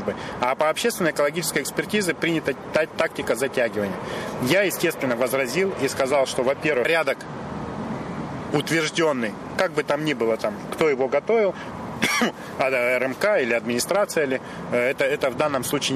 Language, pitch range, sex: Russian, 120-165 Hz, male